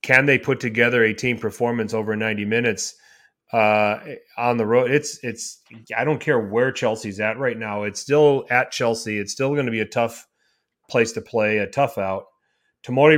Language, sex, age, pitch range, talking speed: English, male, 30-49, 110-130 Hz, 190 wpm